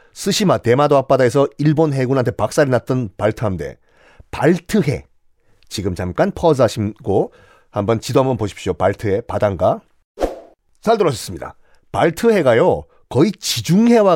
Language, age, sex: Korean, 40-59, male